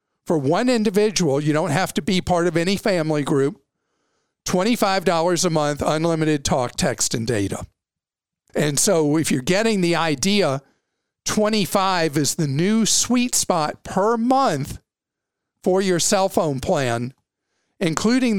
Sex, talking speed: male, 135 wpm